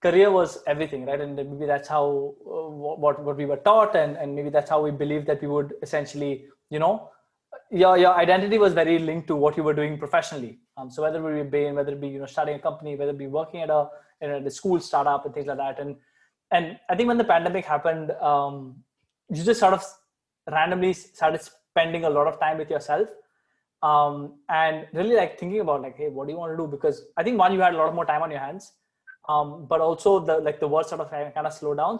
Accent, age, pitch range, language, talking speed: Indian, 20-39, 150-190 Hz, English, 245 wpm